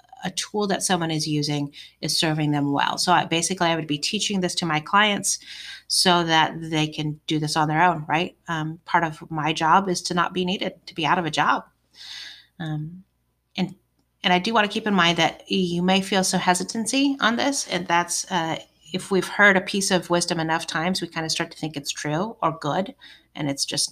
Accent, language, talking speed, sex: American, English, 225 wpm, female